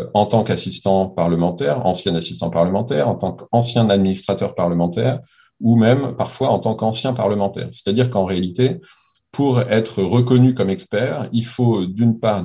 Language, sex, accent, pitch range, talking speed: French, male, French, 85-110 Hz, 150 wpm